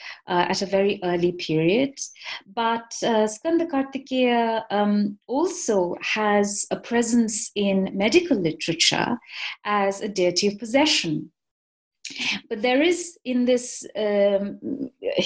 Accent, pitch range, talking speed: Indian, 185-255 Hz, 115 wpm